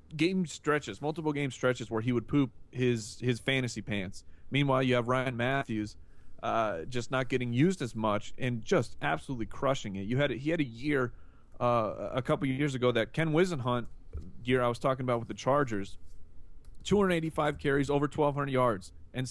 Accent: American